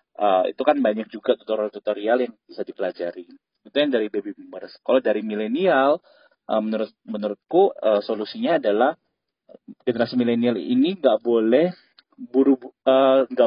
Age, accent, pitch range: 20-39, native, 115-155 Hz